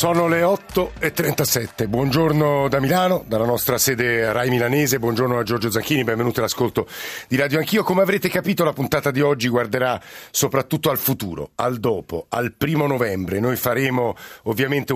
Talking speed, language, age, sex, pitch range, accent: 165 wpm, Italian, 50-69, male, 120-145 Hz, native